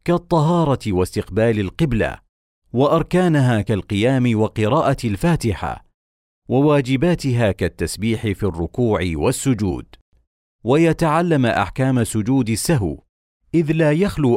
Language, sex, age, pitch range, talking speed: Arabic, male, 40-59, 105-145 Hz, 80 wpm